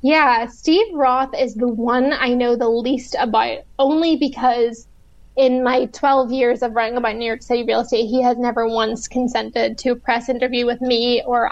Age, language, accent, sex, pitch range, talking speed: 20-39, English, American, female, 235-275 Hz, 195 wpm